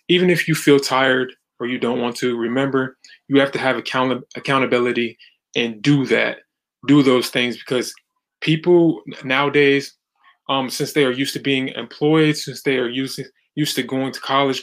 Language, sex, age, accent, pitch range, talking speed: English, male, 20-39, American, 125-140 Hz, 170 wpm